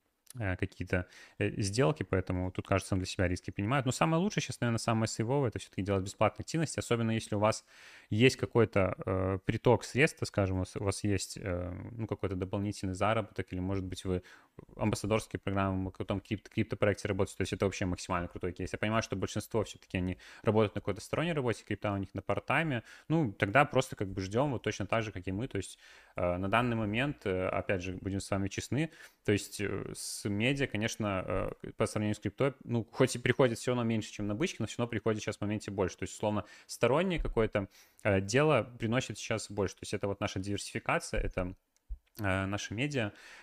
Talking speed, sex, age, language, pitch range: 200 wpm, male, 20-39, Russian, 95-115 Hz